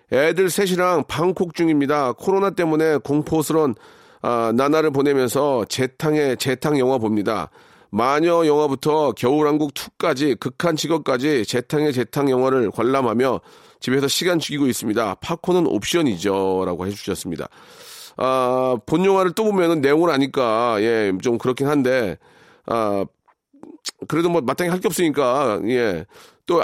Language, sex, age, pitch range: Korean, male, 40-59, 115-175 Hz